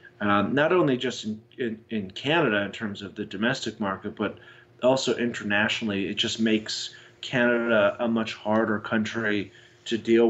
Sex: male